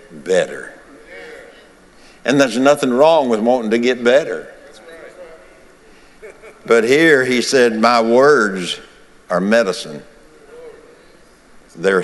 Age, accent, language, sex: 60-79, American, English, male